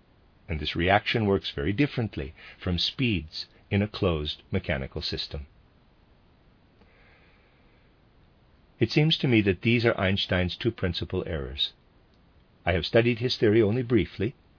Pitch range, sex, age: 90-110 Hz, male, 50-69